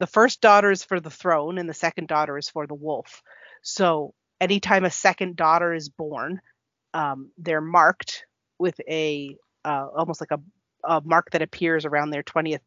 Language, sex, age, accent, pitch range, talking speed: English, female, 40-59, American, 155-180 Hz, 180 wpm